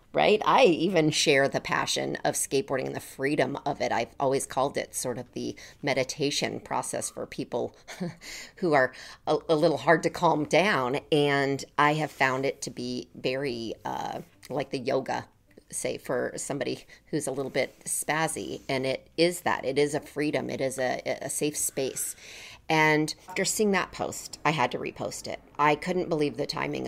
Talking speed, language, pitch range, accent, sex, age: 185 wpm, English, 130-160 Hz, American, female, 40-59